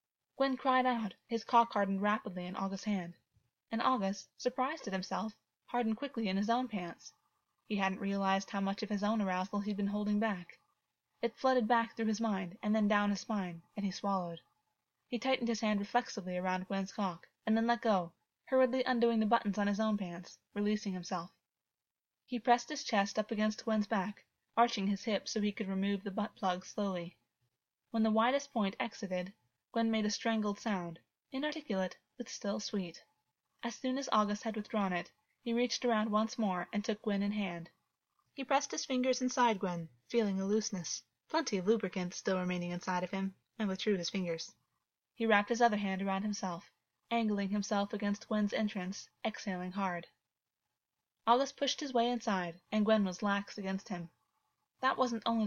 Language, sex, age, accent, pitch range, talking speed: English, female, 20-39, American, 190-230 Hz, 180 wpm